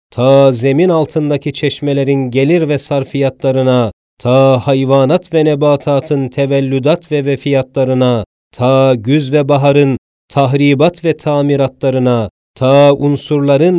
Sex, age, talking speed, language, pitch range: male, 40-59, 100 wpm, Turkish, 130-145 Hz